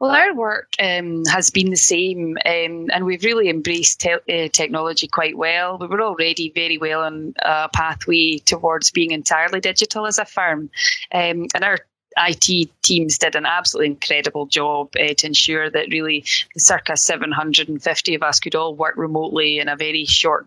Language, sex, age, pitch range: English, female, 20-39, 165-195 Hz